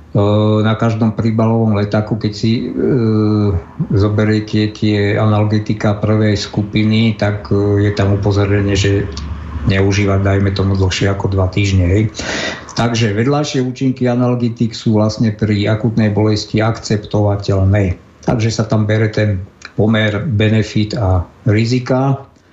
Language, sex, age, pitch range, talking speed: Slovak, male, 50-69, 105-120 Hz, 125 wpm